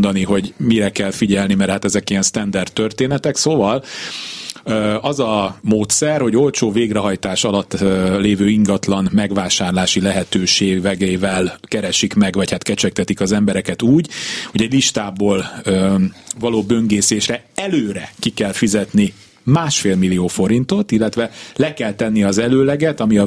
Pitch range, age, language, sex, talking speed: 100-120 Hz, 30-49, Hungarian, male, 130 wpm